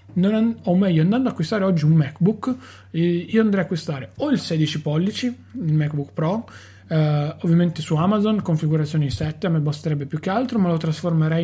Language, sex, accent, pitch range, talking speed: Italian, male, native, 145-175 Hz, 185 wpm